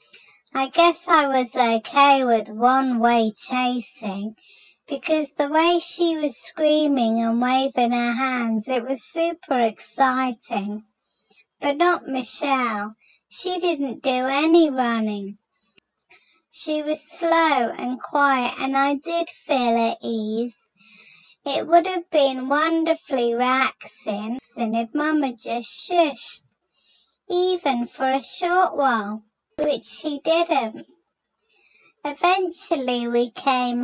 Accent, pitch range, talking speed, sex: British, 230-310 Hz, 110 wpm, male